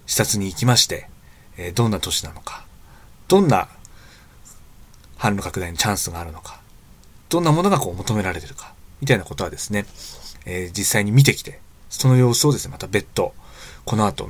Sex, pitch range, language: male, 90-130 Hz, Japanese